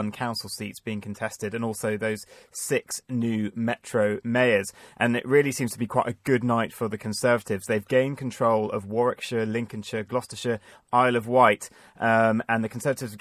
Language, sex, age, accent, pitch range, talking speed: English, male, 30-49, British, 110-125 Hz, 175 wpm